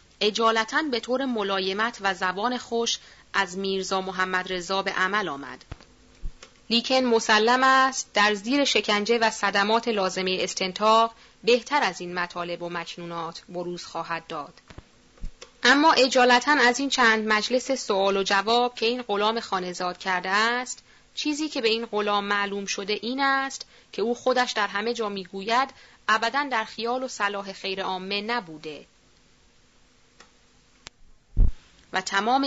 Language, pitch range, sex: Persian, 195-240 Hz, female